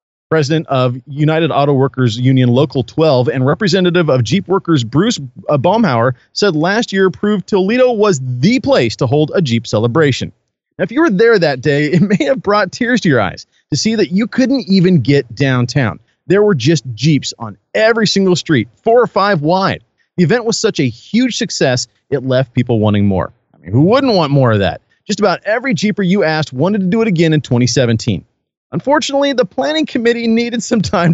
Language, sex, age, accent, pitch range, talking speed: English, male, 30-49, American, 135-210 Hz, 200 wpm